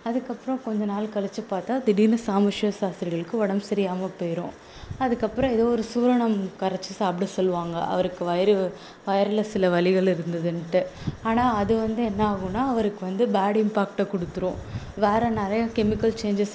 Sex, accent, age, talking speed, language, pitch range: female, native, 20-39, 140 wpm, Tamil, 185-220 Hz